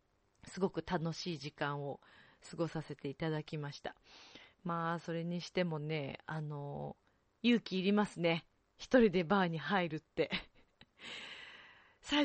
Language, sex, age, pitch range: Japanese, female, 30-49, 155-255 Hz